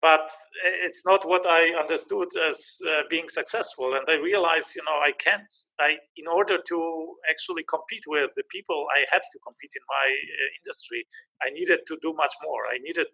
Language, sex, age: English, male, 40-59